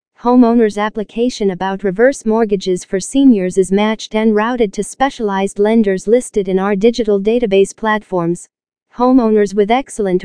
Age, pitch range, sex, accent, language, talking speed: 40-59, 200-235 Hz, female, American, English, 135 wpm